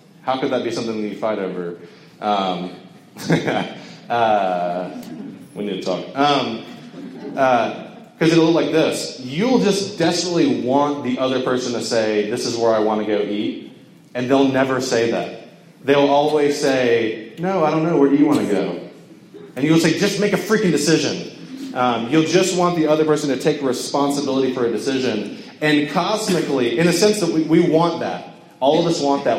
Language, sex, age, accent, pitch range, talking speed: English, male, 30-49, American, 115-160 Hz, 190 wpm